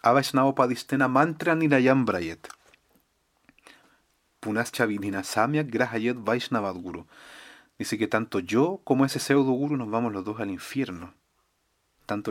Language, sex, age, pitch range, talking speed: Spanish, male, 30-49, 100-130 Hz, 95 wpm